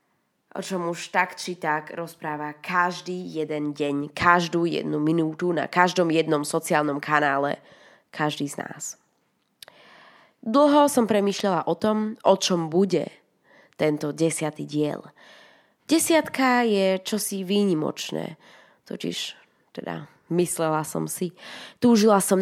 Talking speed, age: 115 wpm, 20-39